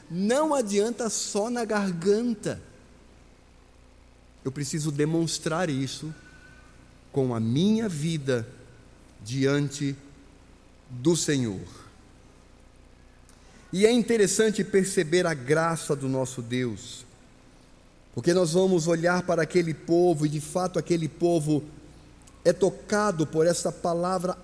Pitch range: 160-205 Hz